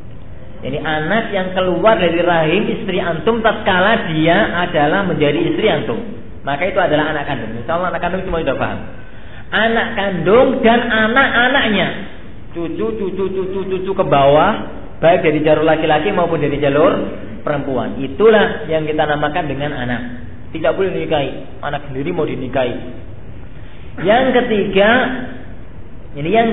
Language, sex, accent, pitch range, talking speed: Indonesian, male, native, 125-195 Hz, 140 wpm